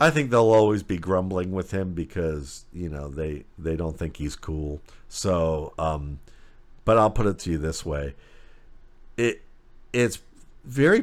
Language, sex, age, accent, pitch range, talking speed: English, male, 50-69, American, 80-95 Hz, 165 wpm